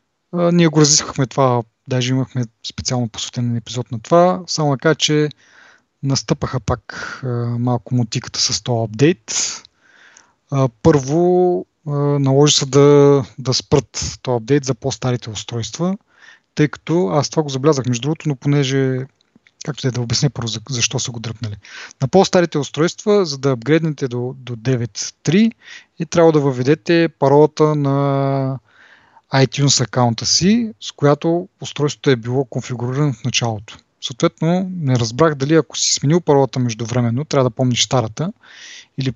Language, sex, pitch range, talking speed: Bulgarian, male, 125-165 Hz, 140 wpm